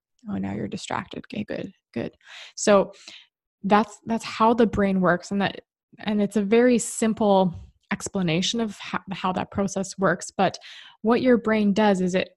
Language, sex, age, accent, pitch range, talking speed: English, female, 20-39, American, 185-220 Hz, 170 wpm